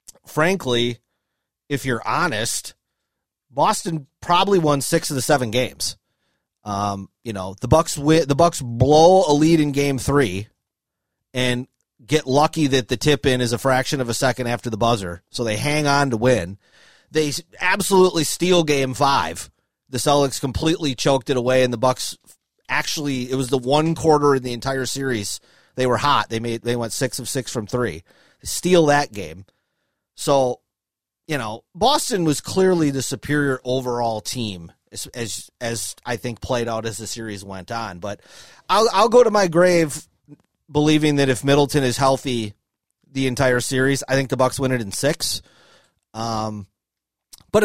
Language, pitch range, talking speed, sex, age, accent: English, 120-150 Hz, 170 wpm, male, 30-49, American